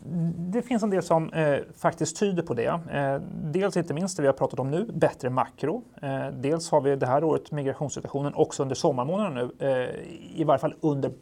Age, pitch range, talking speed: 30-49, 135-160 Hz, 210 wpm